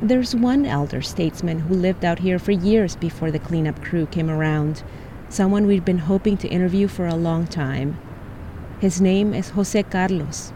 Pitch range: 150-195 Hz